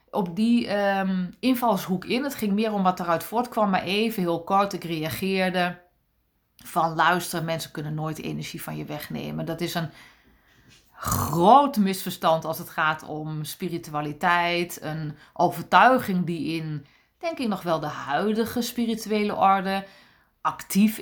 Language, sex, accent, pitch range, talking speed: Dutch, female, Dutch, 165-235 Hz, 140 wpm